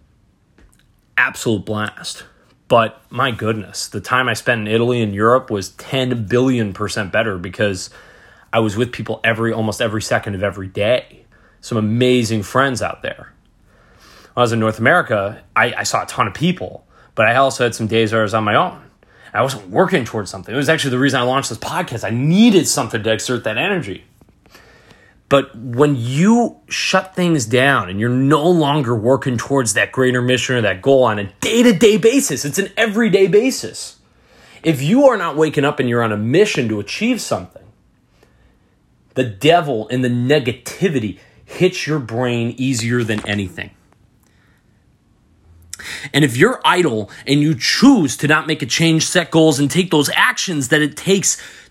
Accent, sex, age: American, male, 30-49